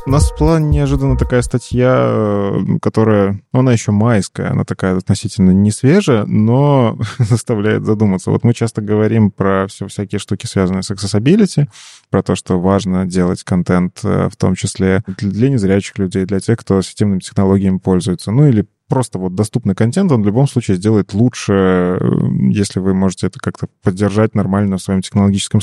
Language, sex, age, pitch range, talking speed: Russian, male, 20-39, 95-125 Hz, 165 wpm